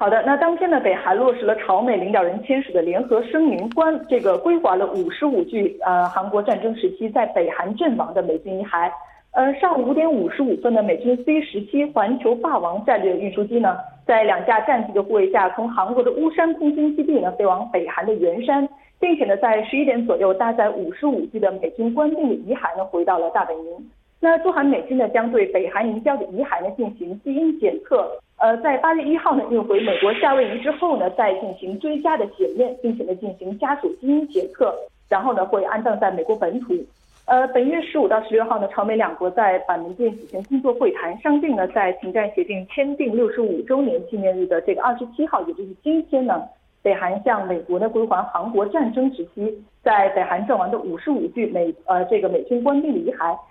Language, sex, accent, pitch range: Korean, female, Chinese, 200-300 Hz